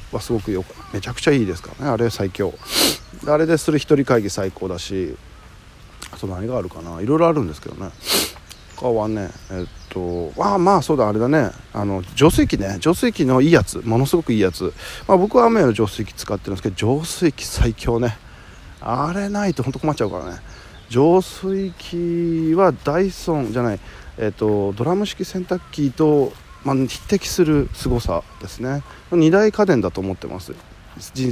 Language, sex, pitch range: Japanese, male, 95-150 Hz